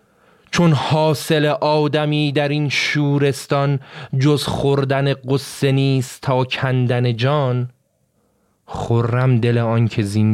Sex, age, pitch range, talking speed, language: male, 30-49, 115-150 Hz, 105 wpm, Persian